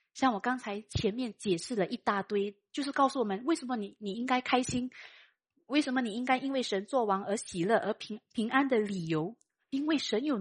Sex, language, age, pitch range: female, Chinese, 30-49, 215-310 Hz